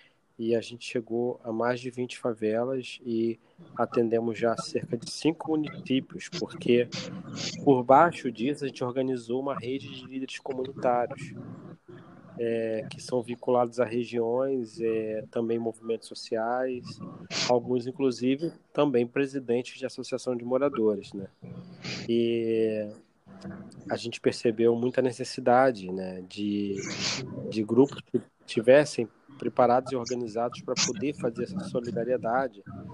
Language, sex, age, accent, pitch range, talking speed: Portuguese, male, 20-39, Brazilian, 115-150 Hz, 120 wpm